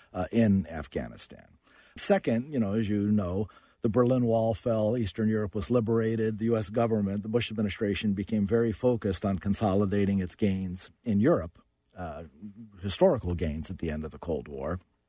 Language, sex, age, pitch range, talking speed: English, male, 50-69, 95-120 Hz, 165 wpm